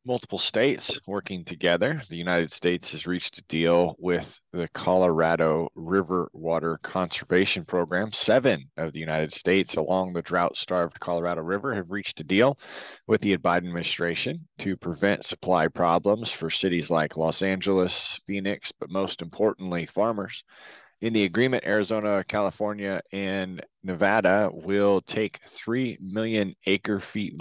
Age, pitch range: 30-49, 85-100 Hz